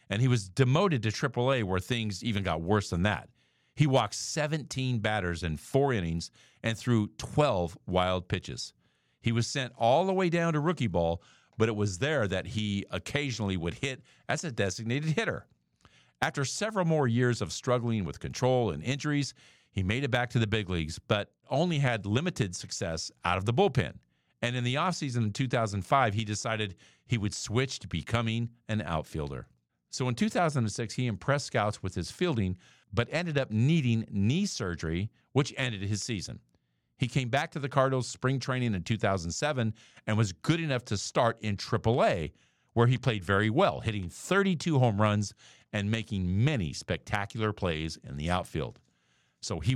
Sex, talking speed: male, 175 wpm